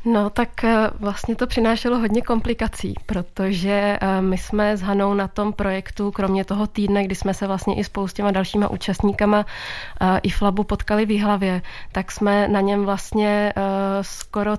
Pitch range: 195-210 Hz